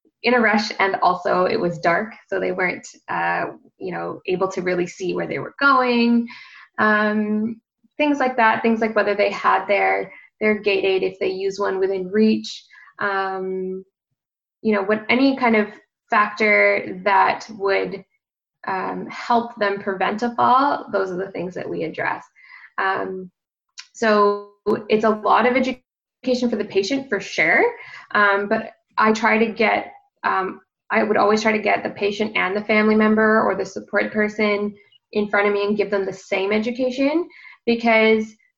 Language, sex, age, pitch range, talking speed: English, female, 10-29, 195-240 Hz, 170 wpm